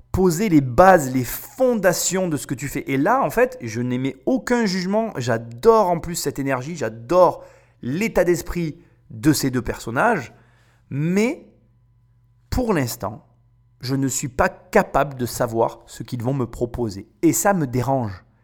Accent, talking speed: French, 160 wpm